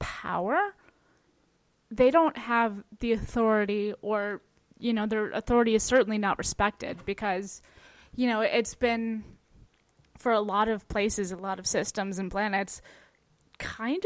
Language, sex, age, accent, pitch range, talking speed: English, female, 20-39, American, 200-230 Hz, 135 wpm